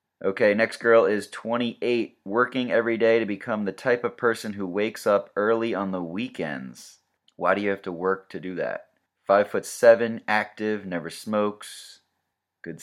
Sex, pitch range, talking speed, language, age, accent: male, 95-115 Hz, 175 wpm, English, 30-49, American